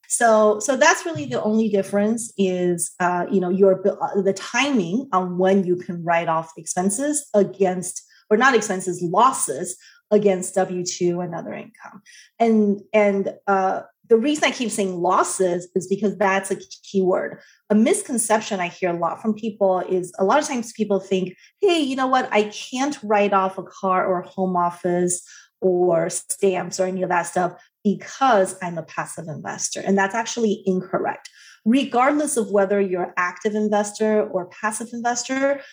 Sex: female